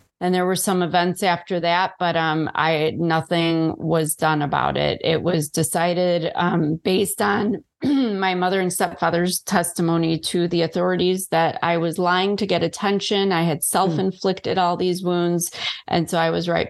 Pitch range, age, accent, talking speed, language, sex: 165-185 Hz, 30-49, American, 170 wpm, English, female